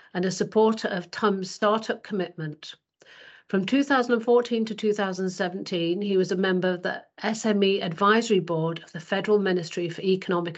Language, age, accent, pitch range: English, 50-69, British, 175-205 Hz